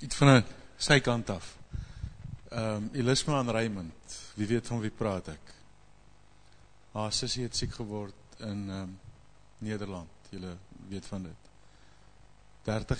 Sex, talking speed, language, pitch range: male, 140 wpm, English, 90-125 Hz